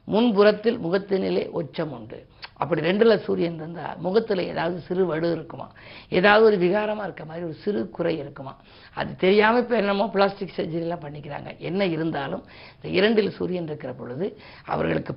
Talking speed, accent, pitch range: 140 wpm, native, 165-205 Hz